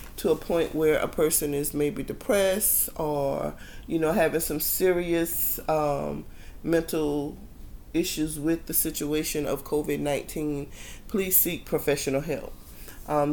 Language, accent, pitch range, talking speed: English, American, 150-170 Hz, 130 wpm